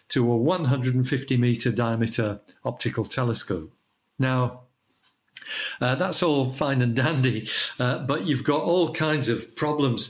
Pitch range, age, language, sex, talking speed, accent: 115-140 Hz, 50-69, English, male, 130 wpm, British